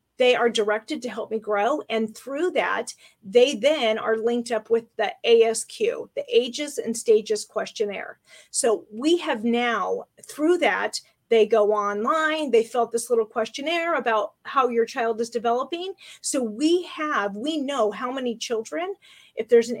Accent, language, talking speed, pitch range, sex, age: American, English, 165 wpm, 225-305 Hz, female, 30-49